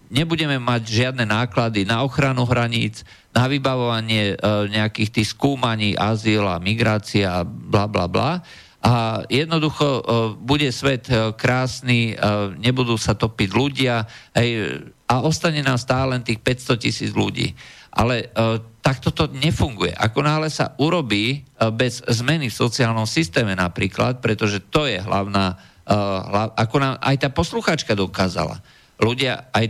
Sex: male